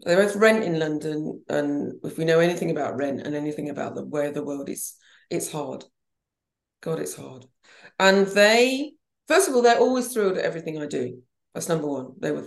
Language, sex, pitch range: English, female, 160-235 Hz